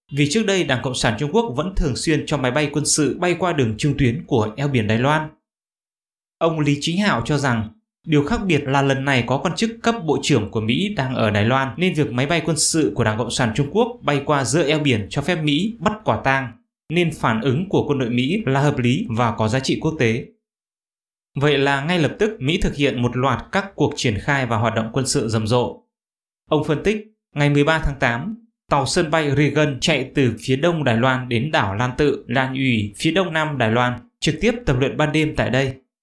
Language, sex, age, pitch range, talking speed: English, male, 20-39, 125-160 Hz, 245 wpm